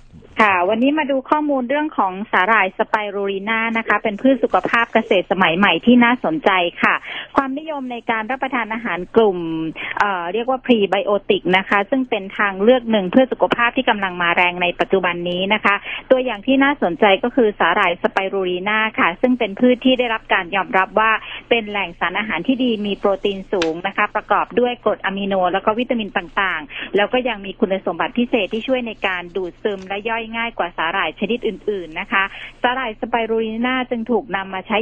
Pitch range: 190-235 Hz